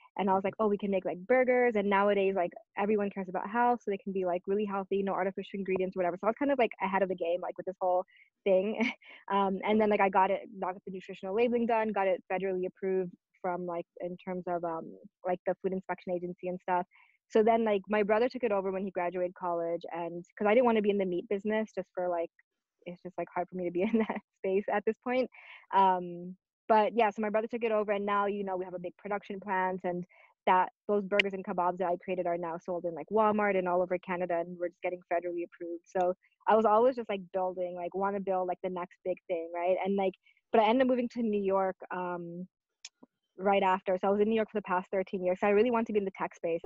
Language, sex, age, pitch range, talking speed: English, female, 20-39, 180-205 Hz, 265 wpm